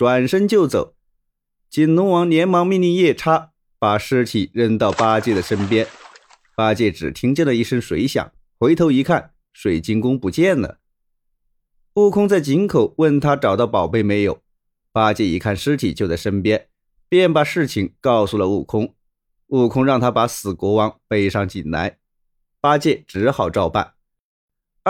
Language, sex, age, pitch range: Chinese, male, 30-49, 110-170 Hz